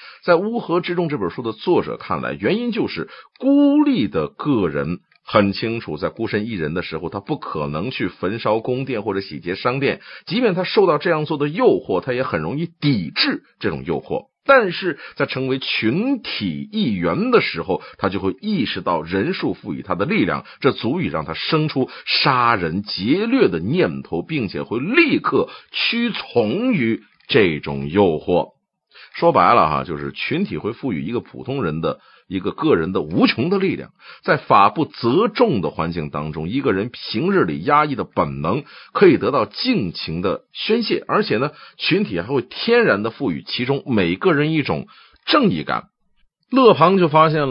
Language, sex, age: Chinese, male, 50-69